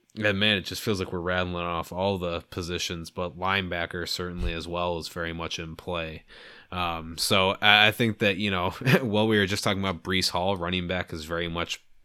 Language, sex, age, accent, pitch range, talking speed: English, male, 20-39, American, 85-95 Hz, 210 wpm